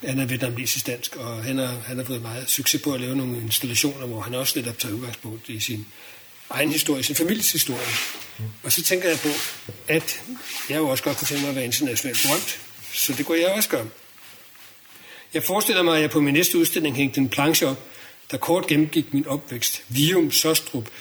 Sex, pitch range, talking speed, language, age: male, 130-155 Hz, 205 wpm, Danish, 60-79